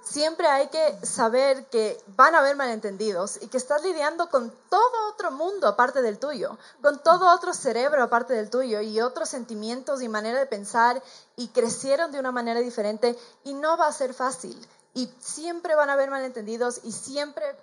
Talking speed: 185 wpm